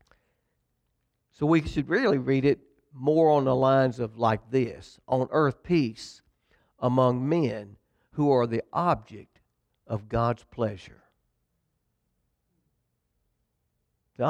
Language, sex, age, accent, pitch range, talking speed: English, male, 60-79, American, 120-150 Hz, 110 wpm